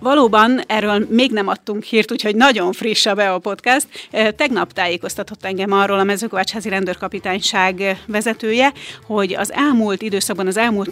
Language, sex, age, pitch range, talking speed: Hungarian, female, 30-49, 195-225 Hz, 150 wpm